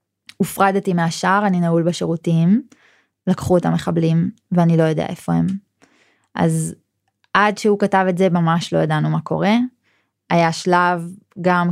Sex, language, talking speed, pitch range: female, Hebrew, 140 wpm, 165-185 Hz